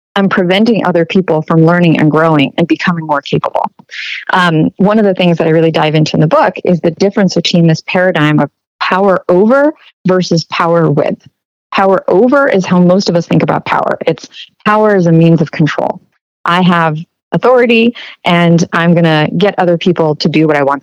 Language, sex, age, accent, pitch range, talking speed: English, female, 30-49, American, 170-205 Hz, 195 wpm